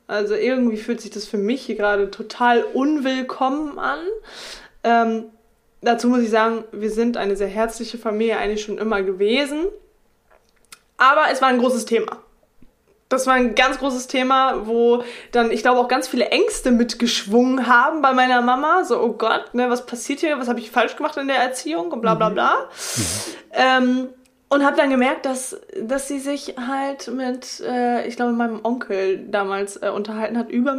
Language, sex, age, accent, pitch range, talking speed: German, female, 20-39, German, 230-285 Hz, 170 wpm